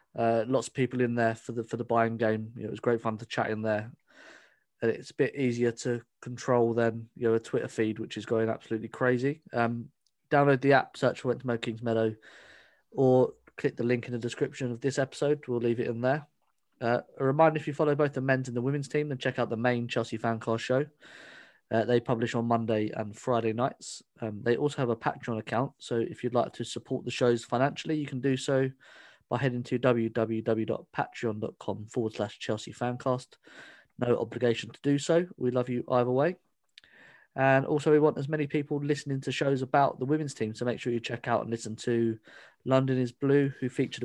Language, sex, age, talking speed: English, male, 20-39, 215 wpm